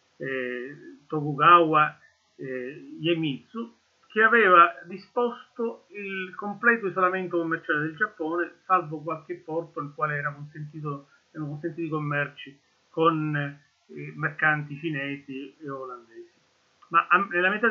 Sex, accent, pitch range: male, native, 145-195 Hz